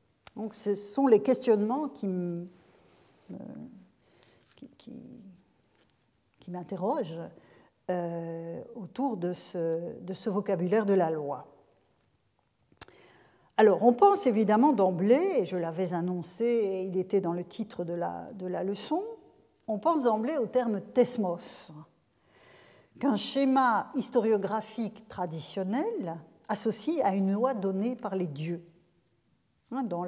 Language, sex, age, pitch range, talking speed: French, female, 50-69, 180-235 Hz, 110 wpm